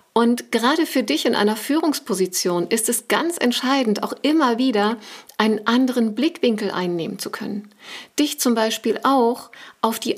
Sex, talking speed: female, 155 wpm